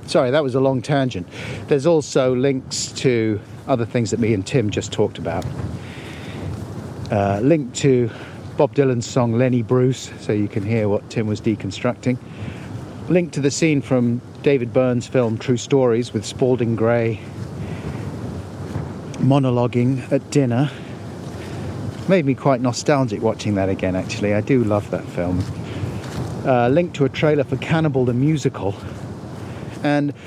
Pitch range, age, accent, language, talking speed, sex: 115-140 Hz, 50-69, British, English, 145 wpm, male